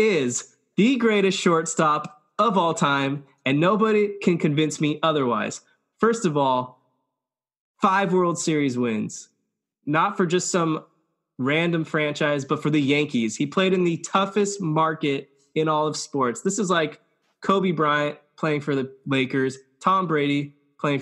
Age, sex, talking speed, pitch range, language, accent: 20-39, male, 150 wpm, 135-175 Hz, English, American